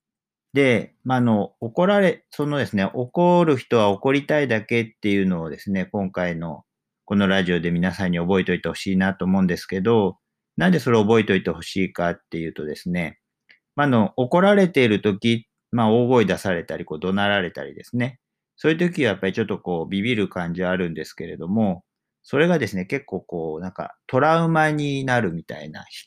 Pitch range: 90-130 Hz